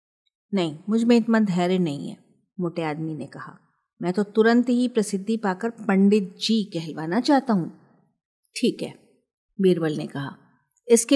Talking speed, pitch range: 150 wpm, 185-245 Hz